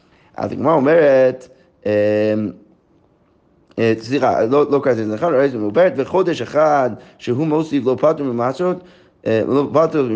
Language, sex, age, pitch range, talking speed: Hebrew, male, 30-49, 120-160 Hz, 95 wpm